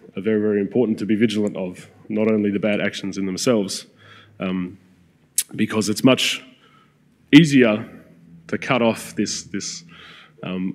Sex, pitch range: male, 95-115 Hz